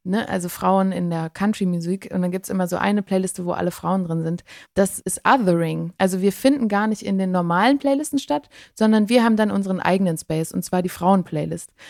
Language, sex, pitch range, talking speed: German, female, 170-200 Hz, 210 wpm